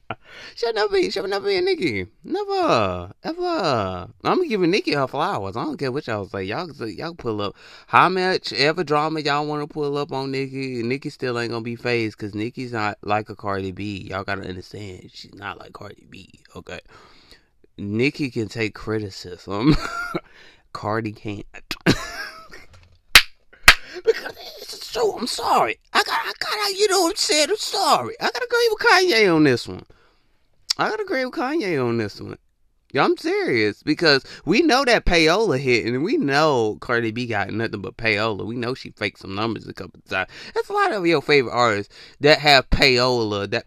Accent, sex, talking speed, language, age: American, male, 185 wpm, English, 20-39